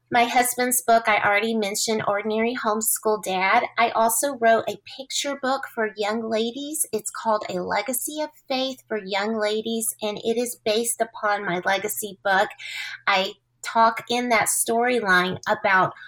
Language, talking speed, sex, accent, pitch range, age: English, 155 wpm, female, American, 210-250 Hz, 30-49